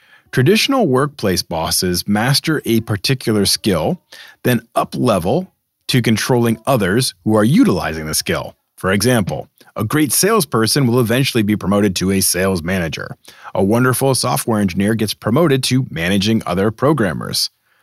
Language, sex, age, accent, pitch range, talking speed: English, male, 40-59, American, 100-135 Hz, 135 wpm